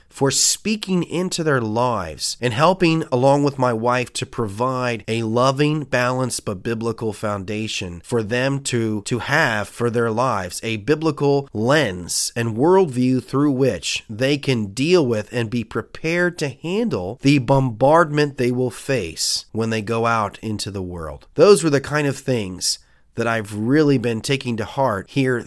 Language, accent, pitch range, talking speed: English, American, 115-150 Hz, 165 wpm